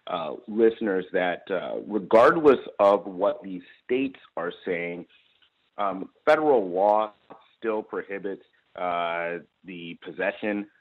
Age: 30-49